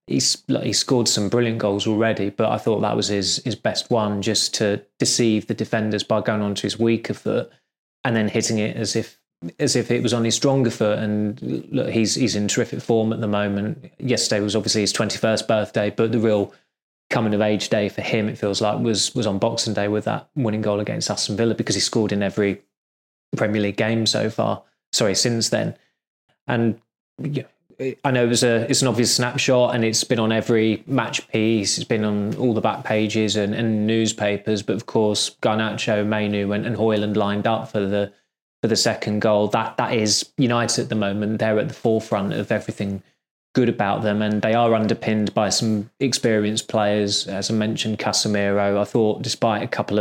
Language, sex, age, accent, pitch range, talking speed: English, male, 20-39, British, 105-115 Hz, 210 wpm